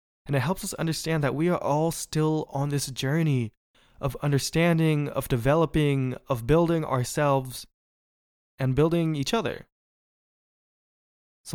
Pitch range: 125-155 Hz